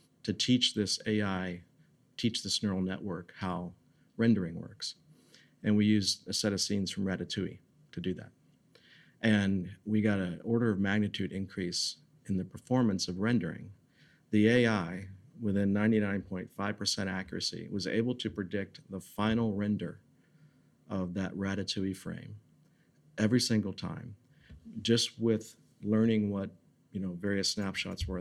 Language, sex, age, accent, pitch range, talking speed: English, male, 50-69, American, 95-110 Hz, 130 wpm